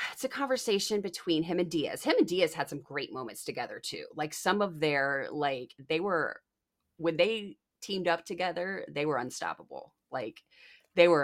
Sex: female